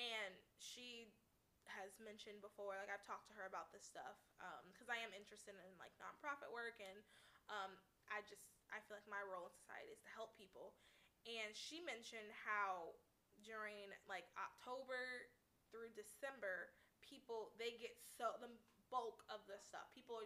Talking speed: 180 wpm